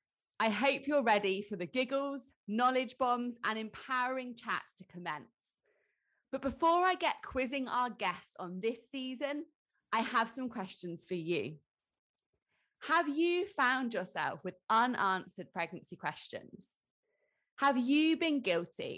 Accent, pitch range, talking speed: British, 200-285 Hz, 135 wpm